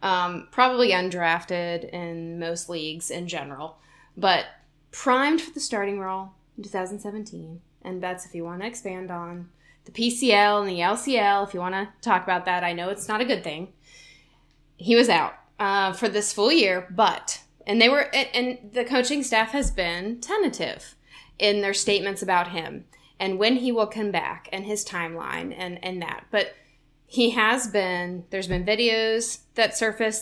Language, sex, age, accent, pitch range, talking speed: English, female, 20-39, American, 175-220 Hz, 175 wpm